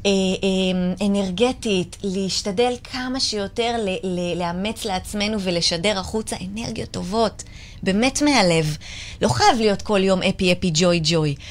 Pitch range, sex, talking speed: 175-235 Hz, female, 120 wpm